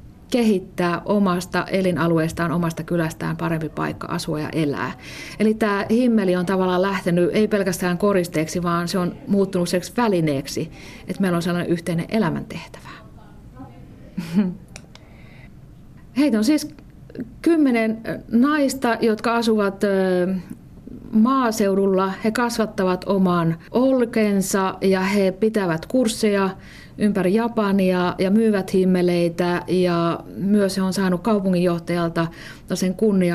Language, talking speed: Finnish, 105 wpm